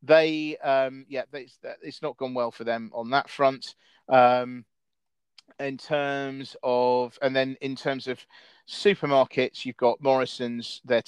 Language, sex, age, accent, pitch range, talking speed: English, male, 40-59, British, 115-135 Hz, 145 wpm